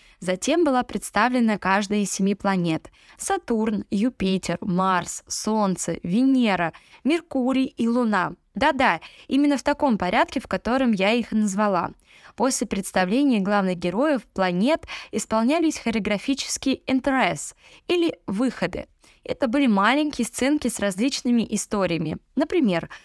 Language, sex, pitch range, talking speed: Russian, female, 200-275 Hz, 110 wpm